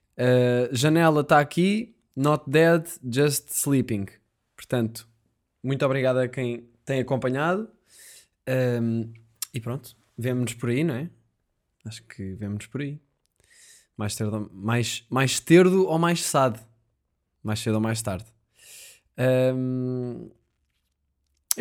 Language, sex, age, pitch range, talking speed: Portuguese, male, 20-39, 115-135 Hz, 115 wpm